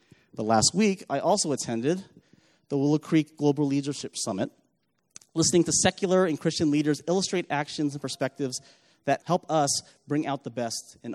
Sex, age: male, 30-49